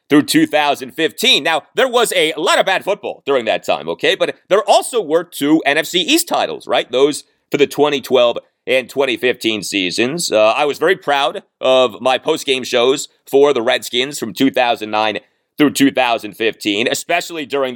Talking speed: 160 wpm